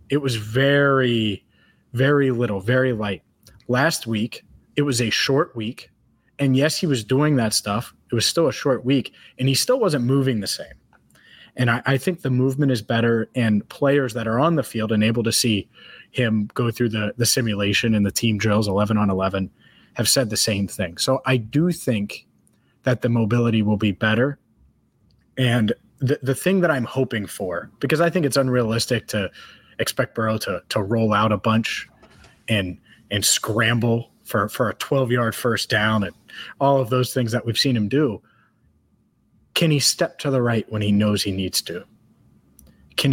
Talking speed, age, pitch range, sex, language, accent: 190 wpm, 20-39, 110-135 Hz, male, English, American